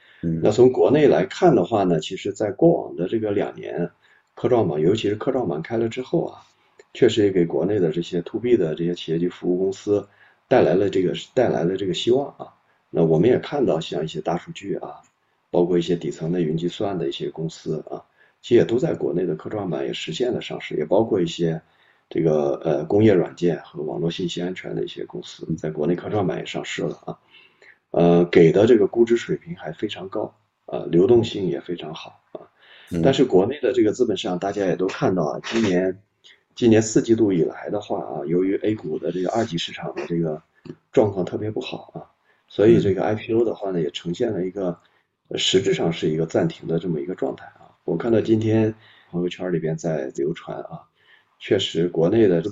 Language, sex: Chinese, male